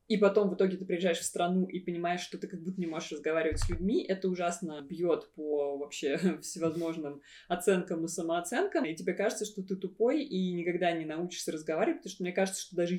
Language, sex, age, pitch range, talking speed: Russian, female, 20-39, 170-205 Hz, 210 wpm